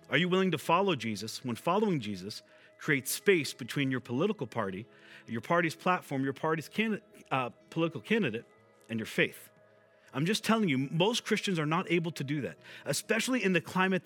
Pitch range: 145-205 Hz